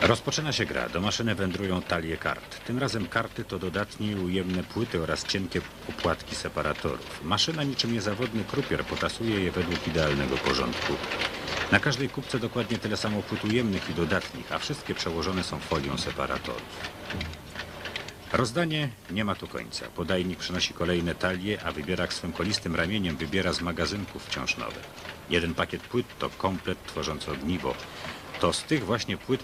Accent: native